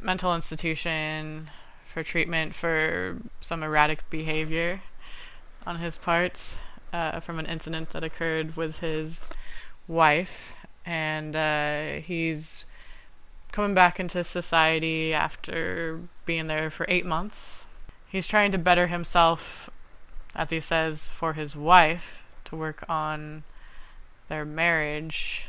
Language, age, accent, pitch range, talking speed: English, 20-39, American, 150-165 Hz, 115 wpm